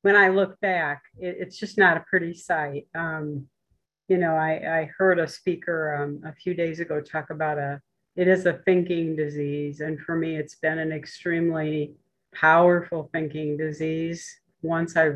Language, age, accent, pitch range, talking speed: English, 50-69, American, 155-180 Hz, 170 wpm